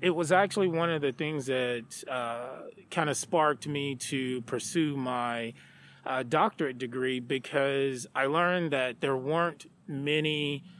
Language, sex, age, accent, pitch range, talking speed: English, male, 30-49, American, 130-155 Hz, 140 wpm